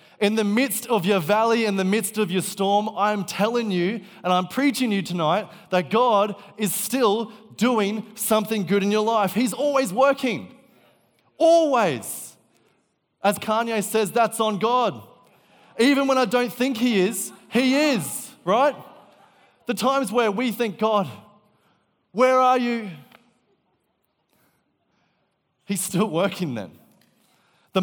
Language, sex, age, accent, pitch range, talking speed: English, male, 20-39, Australian, 165-225 Hz, 140 wpm